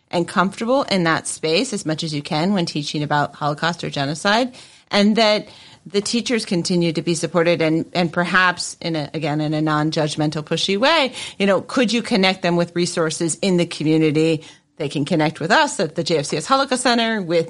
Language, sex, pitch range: English, female, 160-205 Hz